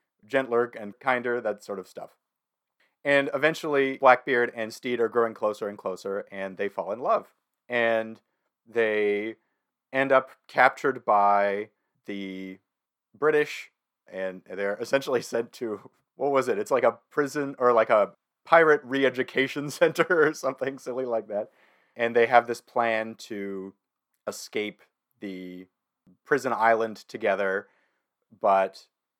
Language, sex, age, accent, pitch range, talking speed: English, male, 30-49, American, 100-130 Hz, 135 wpm